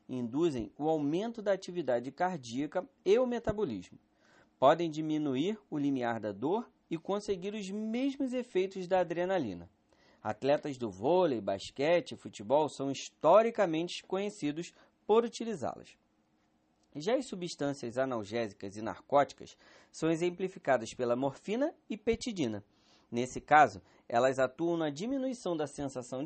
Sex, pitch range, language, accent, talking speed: male, 135-205 Hz, Portuguese, Brazilian, 120 wpm